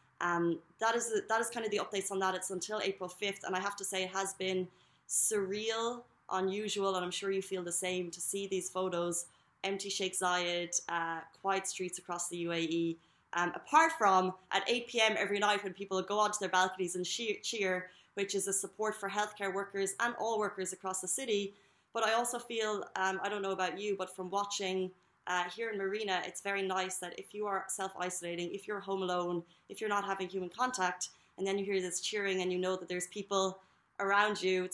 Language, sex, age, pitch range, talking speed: Arabic, female, 20-39, 180-205 Hz, 215 wpm